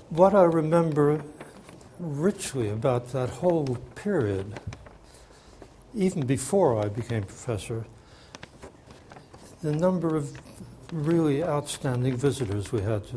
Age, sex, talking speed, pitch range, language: 60-79, male, 100 wpm, 115-160 Hz, English